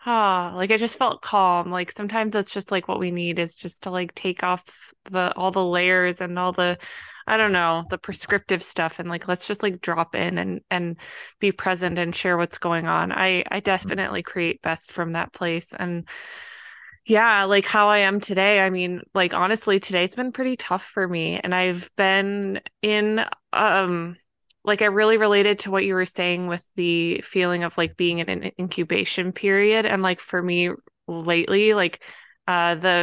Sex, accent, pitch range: female, American, 175-200 Hz